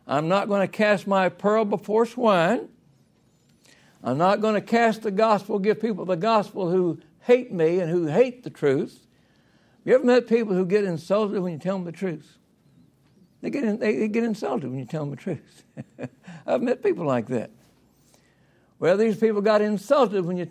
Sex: male